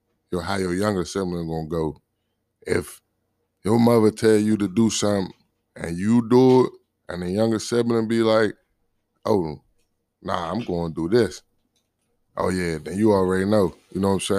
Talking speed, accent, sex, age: 175 wpm, American, male, 20-39